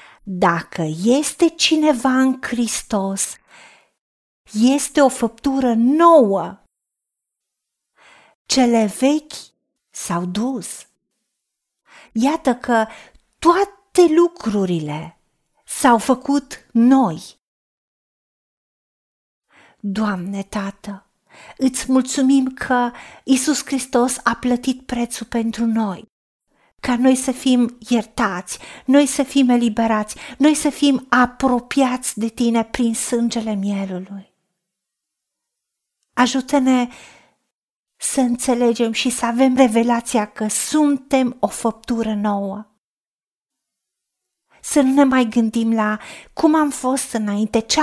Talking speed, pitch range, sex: 90 wpm, 220-270 Hz, female